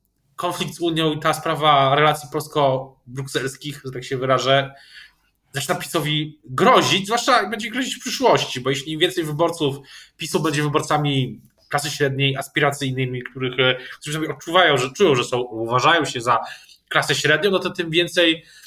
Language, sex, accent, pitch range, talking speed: Polish, male, native, 130-160 Hz, 150 wpm